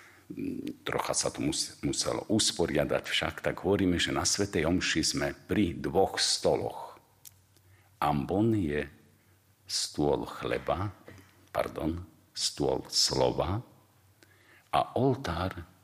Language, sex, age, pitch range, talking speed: Slovak, male, 50-69, 95-110 Hz, 95 wpm